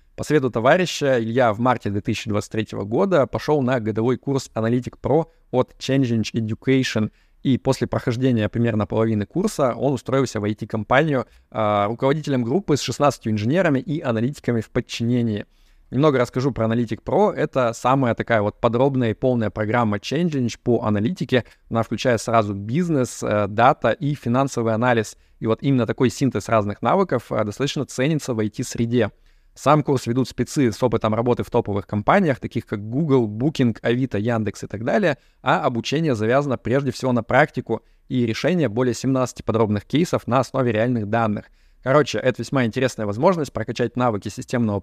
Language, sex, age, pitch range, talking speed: Russian, male, 20-39, 110-135 Hz, 155 wpm